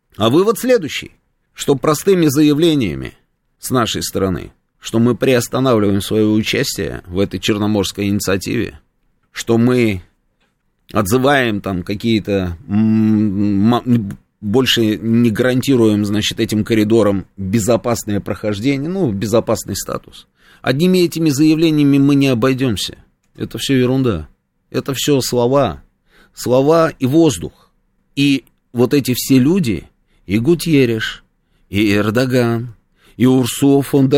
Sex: male